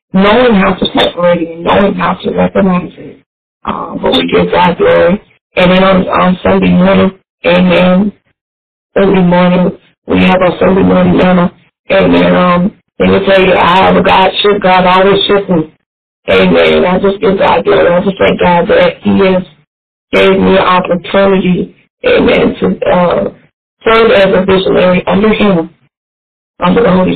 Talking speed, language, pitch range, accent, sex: 175 wpm, English, 170-195 Hz, American, female